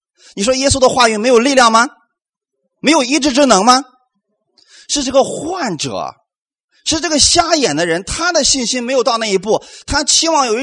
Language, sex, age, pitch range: Chinese, male, 30-49, 205-310 Hz